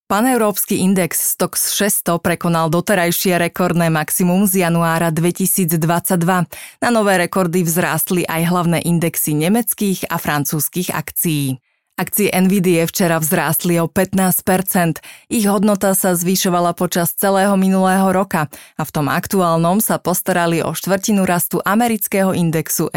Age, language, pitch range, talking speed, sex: 20-39, Slovak, 165-190 Hz, 125 wpm, female